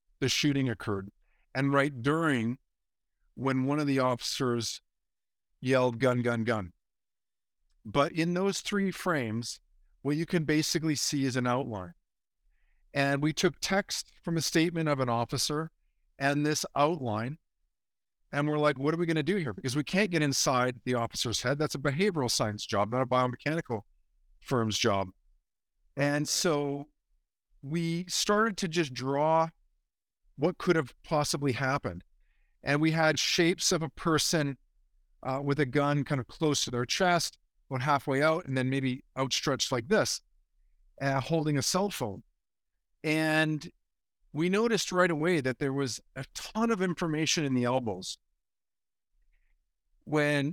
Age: 50-69